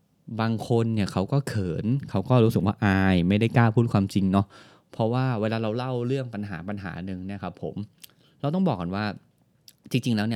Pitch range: 95-130 Hz